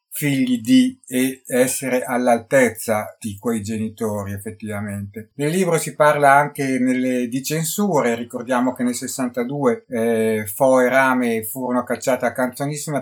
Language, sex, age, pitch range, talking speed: Italian, male, 50-69, 115-135 Hz, 135 wpm